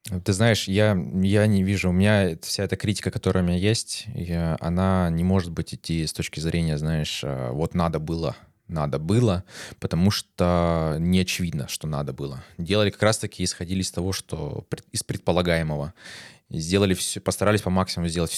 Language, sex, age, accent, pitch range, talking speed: Russian, male, 20-39, native, 85-100 Hz, 170 wpm